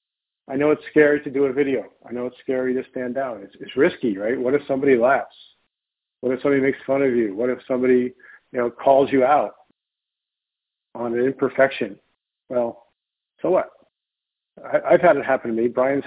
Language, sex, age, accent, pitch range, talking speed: English, male, 50-69, American, 125-145 Hz, 195 wpm